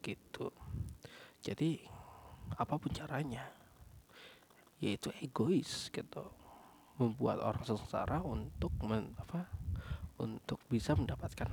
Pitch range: 105-135 Hz